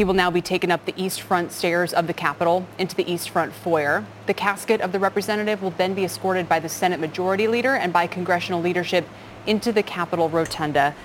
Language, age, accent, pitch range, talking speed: English, 30-49, American, 165-185 Hz, 215 wpm